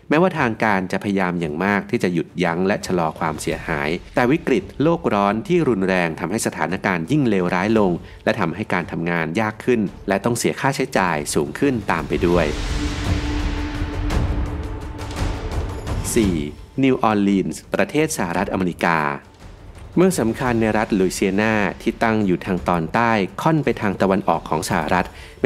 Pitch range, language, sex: 90-115 Hz, Thai, male